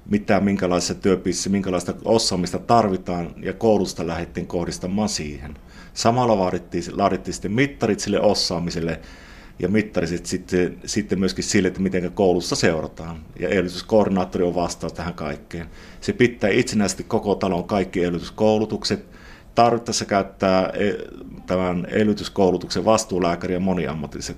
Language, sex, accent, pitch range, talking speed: Finnish, male, native, 85-105 Hz, 120 wpm